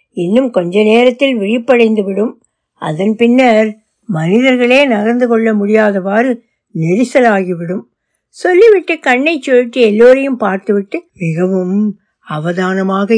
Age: 60-79